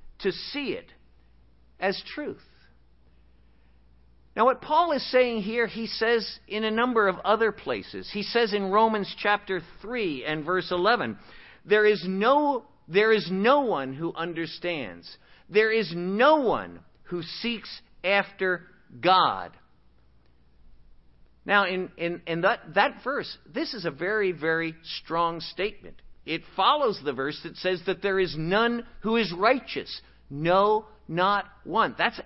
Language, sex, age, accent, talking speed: English, male, 50-69, American, 140 wpm